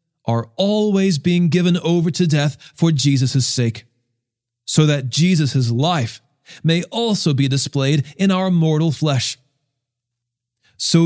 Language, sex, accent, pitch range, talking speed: English, male, American, 125-165 Hz, 125 wpm